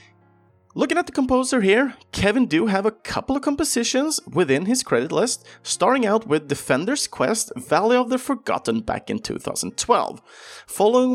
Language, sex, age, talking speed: Swedish, male, 30-49, 155 wpm